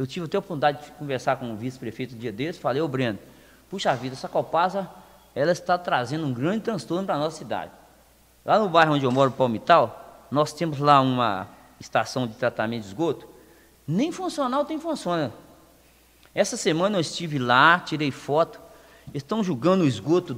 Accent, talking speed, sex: Brazilian, 185 wpm, male